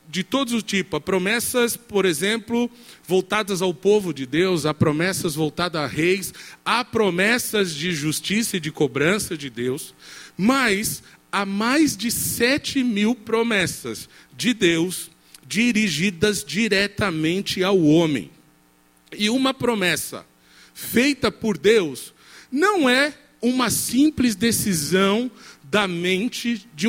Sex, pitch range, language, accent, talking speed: male, 175-235 Hz, Portuguese, Brazilian, 120 wpm